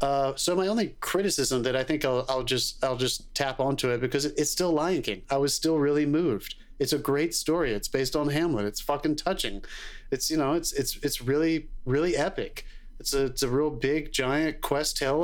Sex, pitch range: male, 130-155 Hz